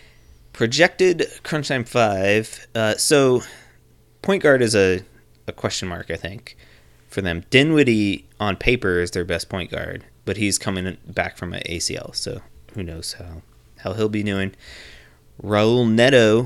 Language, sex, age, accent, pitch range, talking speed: English, male, 30-49, American, 85-110 Hz, 155 wpm